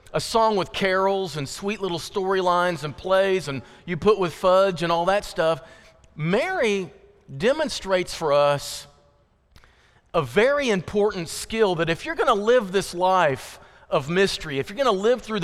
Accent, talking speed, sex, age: American, 165 wpm, male, 40-59